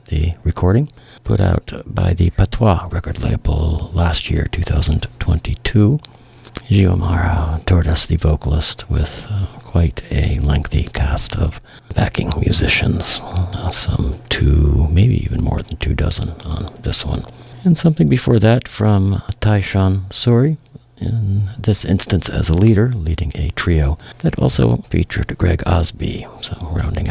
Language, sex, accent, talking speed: English, male, American, 135 wpm